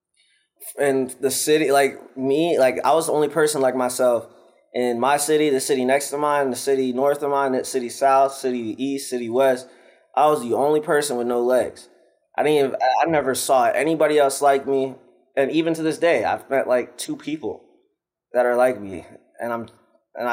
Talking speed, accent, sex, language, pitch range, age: 200 wpm, American, male, English, 115-140 Hz, 20-39